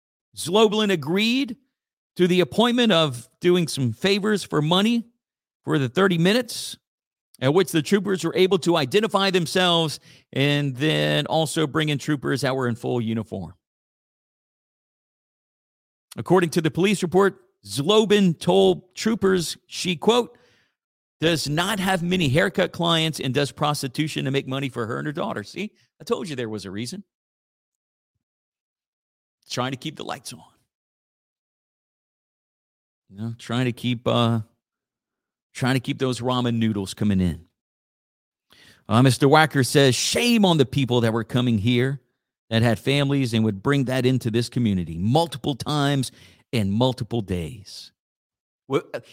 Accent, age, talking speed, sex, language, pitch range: American, 50-69, 145 wpm, male, English, 120-185 Hz